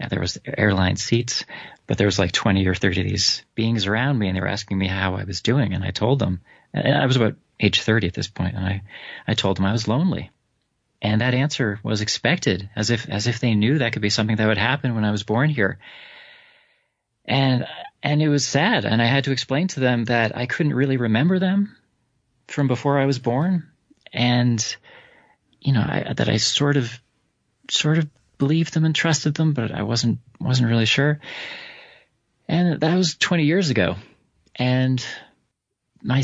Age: 30-49